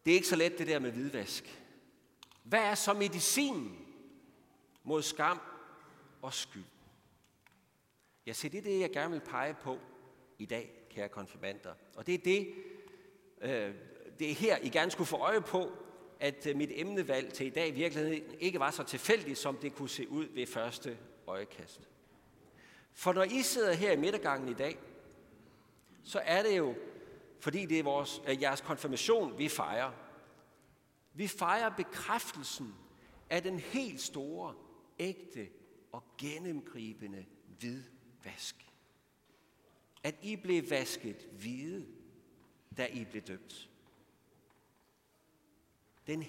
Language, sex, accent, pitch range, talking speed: Danish, male, native, 130-210 Hz, 135 wpm